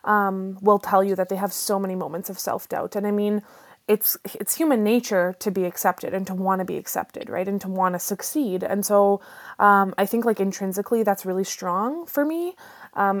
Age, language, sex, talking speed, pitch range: 20-39, English, female, 215 wpm, 185-210 Hz